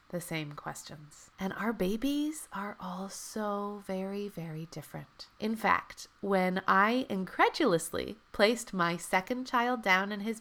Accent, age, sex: American, 30-49, female